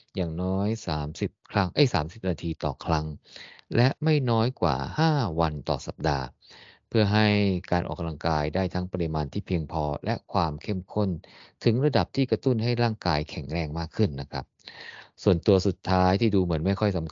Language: Thai